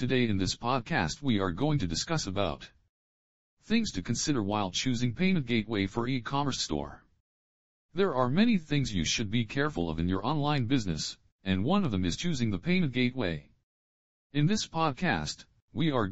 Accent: American